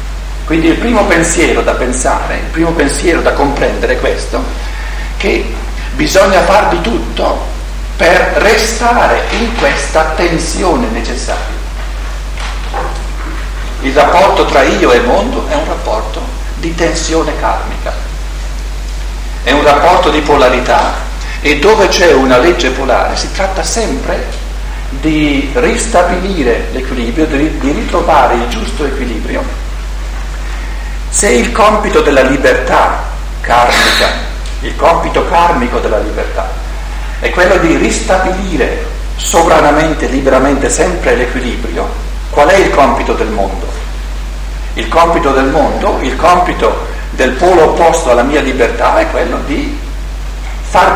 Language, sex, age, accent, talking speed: Italian, male, 50-69, native, 115 wpm